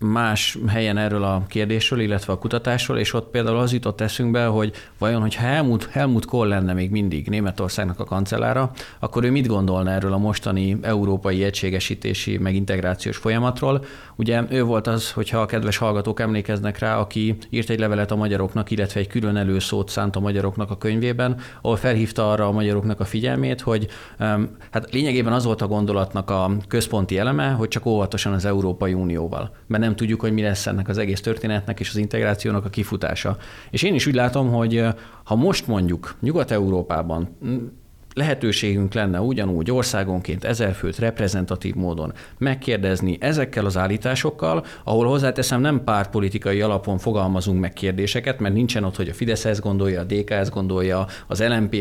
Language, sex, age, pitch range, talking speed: Hungarian, male, 30-49, 100-120 Hz, 165 wpm